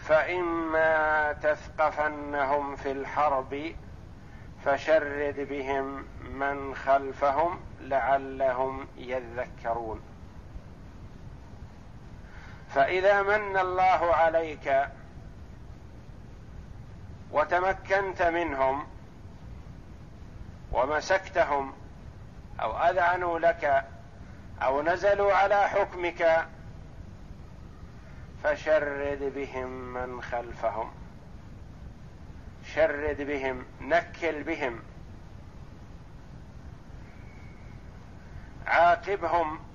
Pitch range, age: 115-170 Hz, 50-69